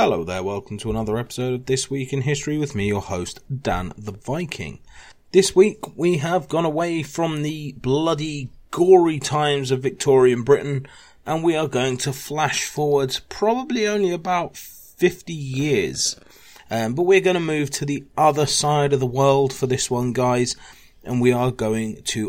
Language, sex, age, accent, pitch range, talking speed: English, male, 30-49, British, 110-145 Hz, 180 wpm